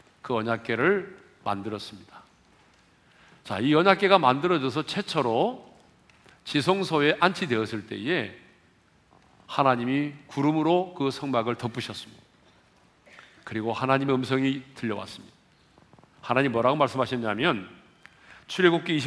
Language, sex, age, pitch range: Korean, male, 40-59, 115-165 Hz